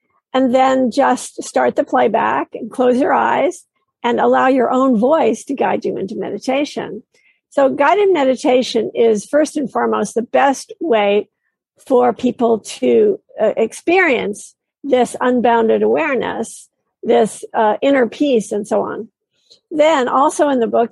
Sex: female